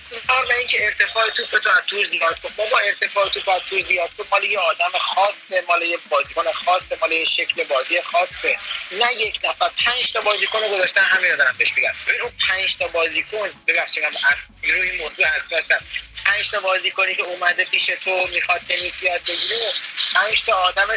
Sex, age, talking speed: male, 30-49, 175 wpm